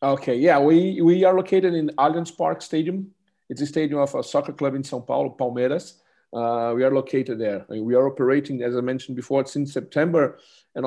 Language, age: English, 40-59